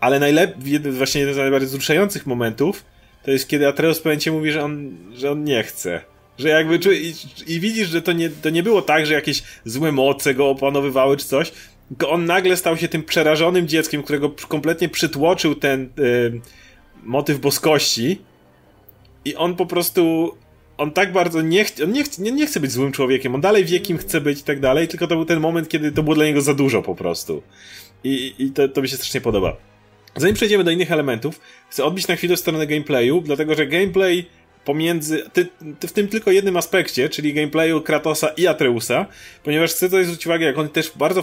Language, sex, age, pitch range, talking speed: Polish, male, 30-49, 135-170 Hz, 205 wpm